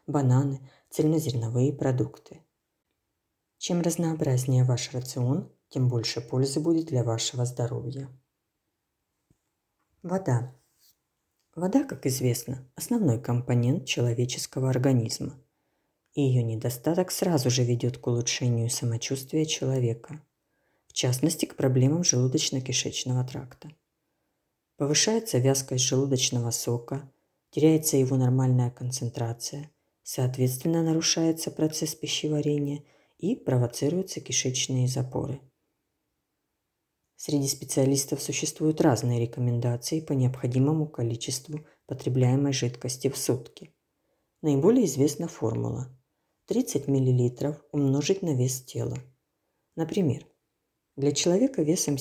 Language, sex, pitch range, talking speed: Ukrainian, female, 125-155 Hz, 90 wpm